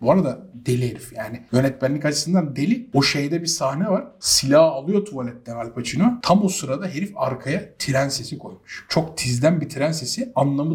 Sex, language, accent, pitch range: male, Turkish, native, 145-230 Hz